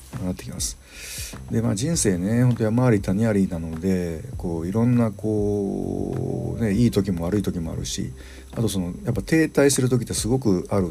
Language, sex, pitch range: Japanese, male, 90-110 Hz